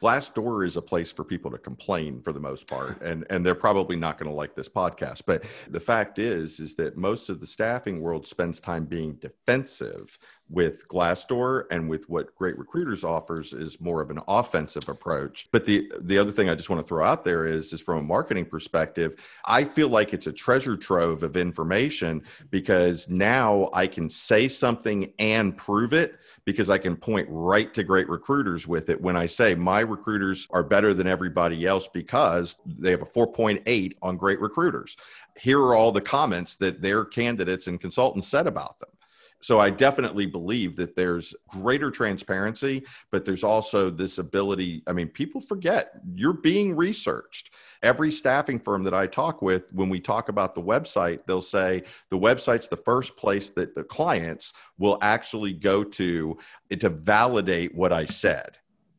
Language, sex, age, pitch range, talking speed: English, male, 50-69, 85-110 Hz, 185 wpm